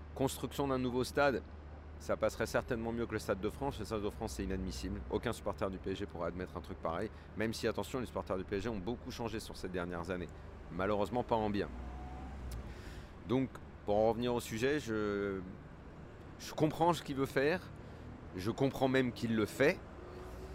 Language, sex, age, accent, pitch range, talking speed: French, male, 40-59, French, 85-110 Hz, 190 wpm